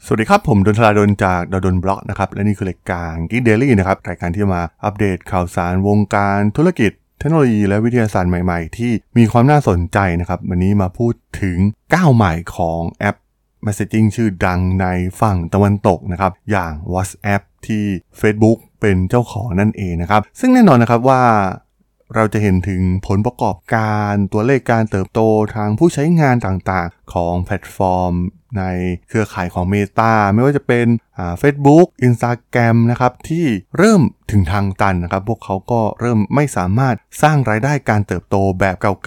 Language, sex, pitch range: Thai, male, 95-115 Hz